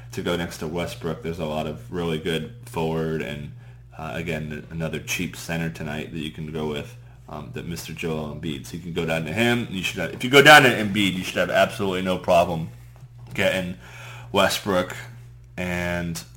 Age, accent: 30-49, American